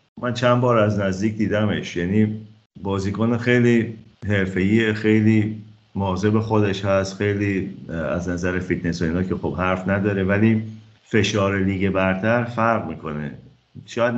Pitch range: 85-110 Hz